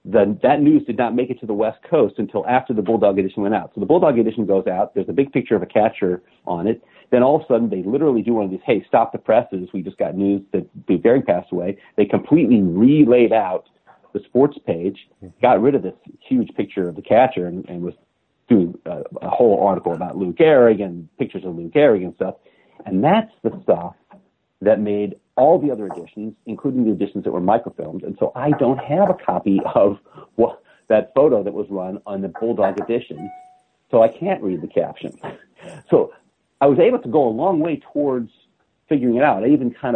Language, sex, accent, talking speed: English, male, American, 220 wpm